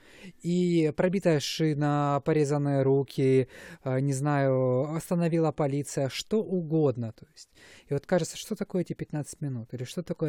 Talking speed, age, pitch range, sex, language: 140 wpm, 20-39, 125-150 Hz, male, Russian